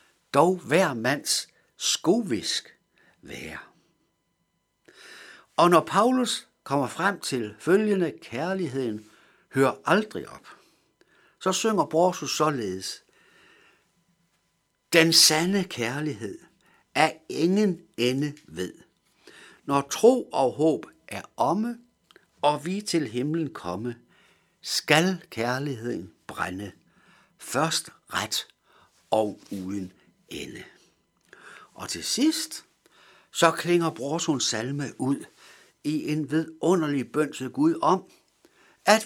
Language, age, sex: Danish, 60-79, male